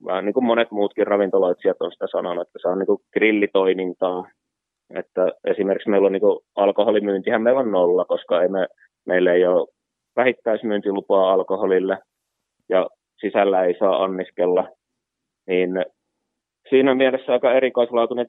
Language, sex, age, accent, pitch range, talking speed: Finnish, male, 20-39, native, 95-115 Hz, 130 wpm